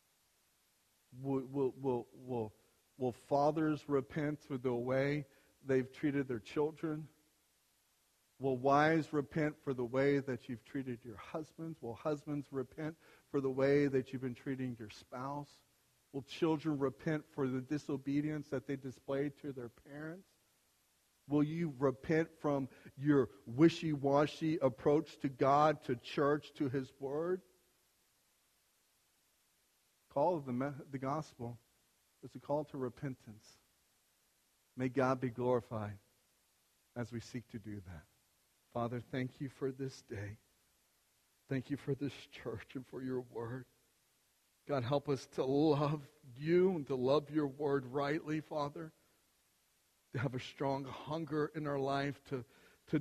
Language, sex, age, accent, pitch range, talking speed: English, male, 50-69, American, 130-150 Hz, 135 wpm